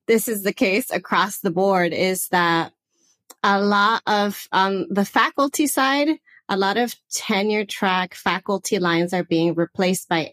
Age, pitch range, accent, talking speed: 30-49, 170-200 Hz, American, 155 wpm